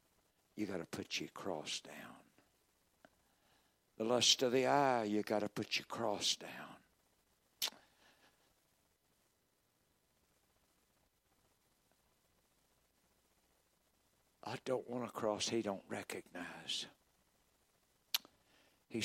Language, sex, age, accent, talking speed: English, male, 60-79, American, 80 wpm